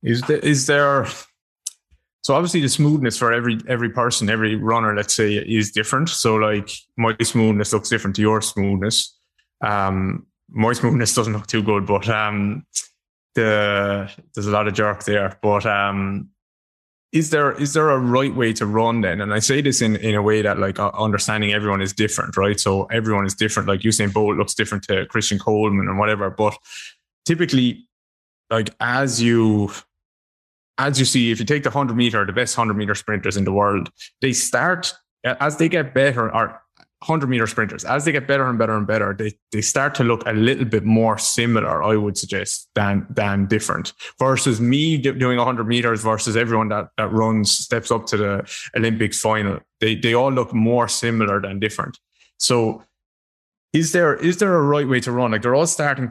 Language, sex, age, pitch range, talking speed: English, male, 20-39, 105-125 Hz, 190 wpm